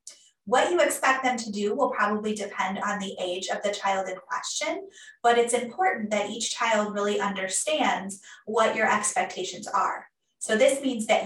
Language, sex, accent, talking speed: English, female, American, 175 wpm